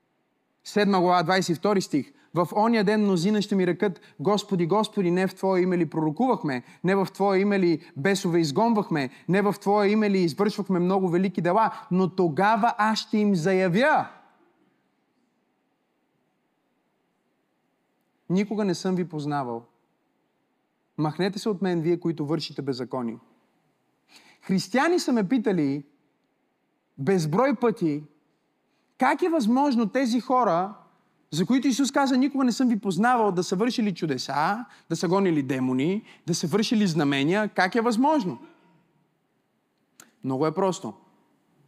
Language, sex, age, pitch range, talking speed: Bulgarian, male, 30-49, 170-220 Hz, 130 wpm